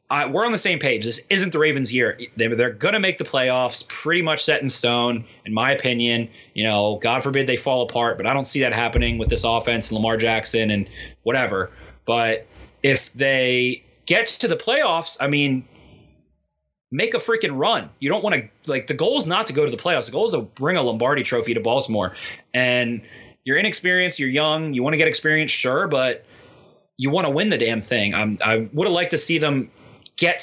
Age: 20-39